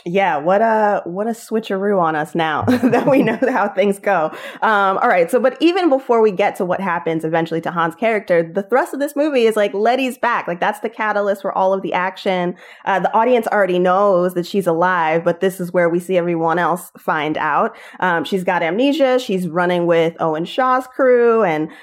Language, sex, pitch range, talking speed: English, female, 175-220 Hz, 215 wpm